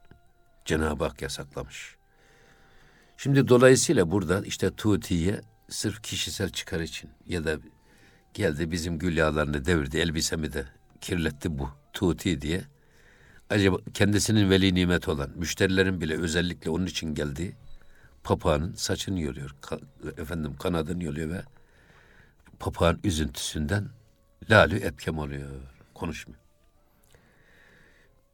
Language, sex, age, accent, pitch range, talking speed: Turkish, male, 60-79, native, 80-110 Hz, 105 wpm